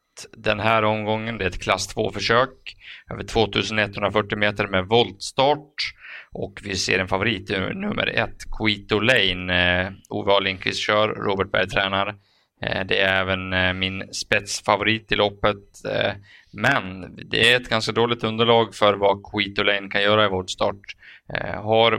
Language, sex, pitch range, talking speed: Swedish, male, 95-110 Hz, 140 wpm